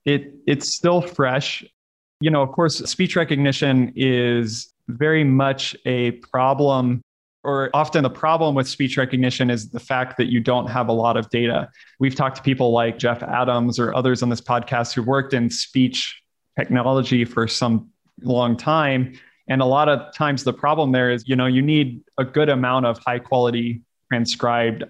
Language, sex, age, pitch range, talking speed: English, male, 20-39, 120-140 Hz, 175 wpm